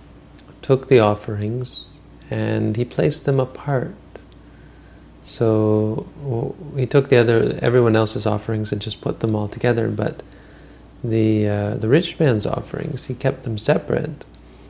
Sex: male